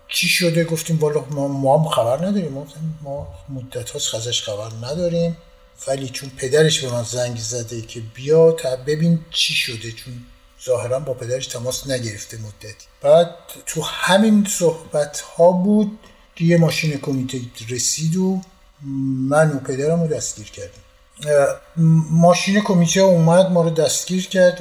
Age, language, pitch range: 50-69, Persian, 130-170 Hz